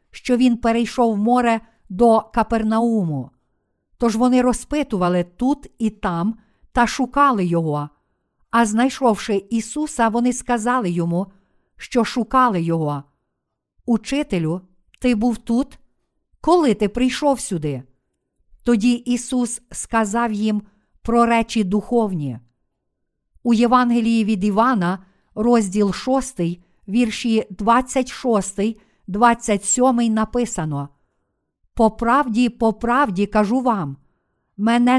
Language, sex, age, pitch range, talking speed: Ukrainian, female, 50-69, 200-245 Hz, 100 wpm